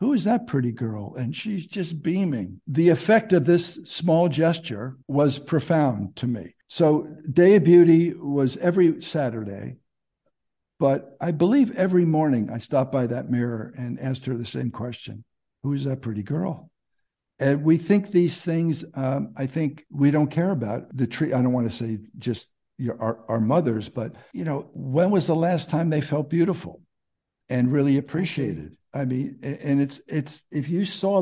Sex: male